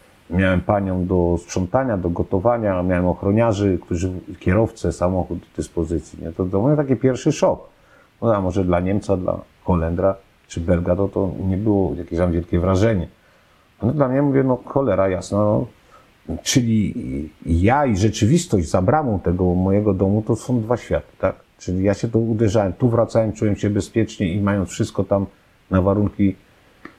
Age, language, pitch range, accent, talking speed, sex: 50-69, Polish, 95-135 Hz, native, 160 wpm, male